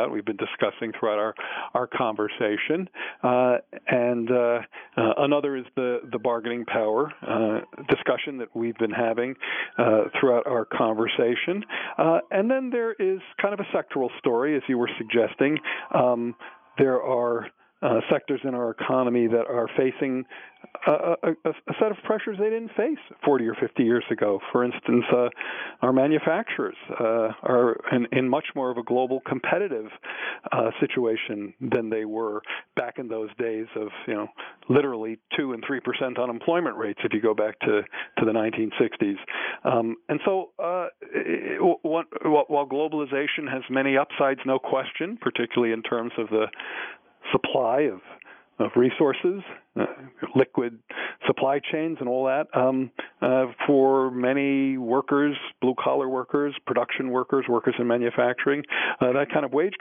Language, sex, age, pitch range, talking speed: English, male, 50-69, 115-150 Hz, 155 wpm